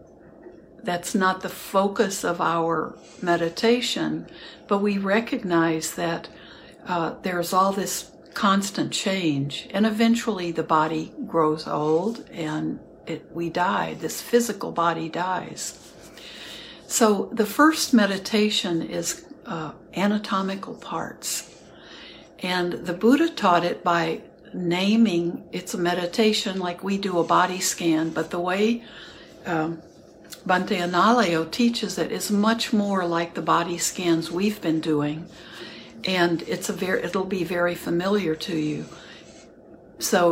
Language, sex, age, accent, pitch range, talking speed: English, female, 60-79, American, 170-215 Hz, 125 wpm